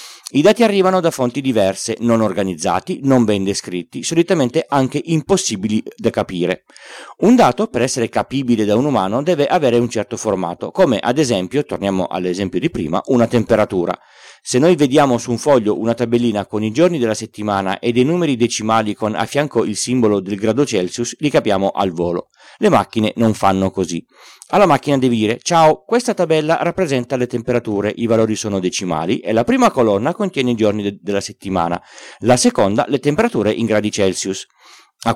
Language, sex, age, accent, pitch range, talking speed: Italian, male, 40-59, native, 105-140 Hz, 175 wpm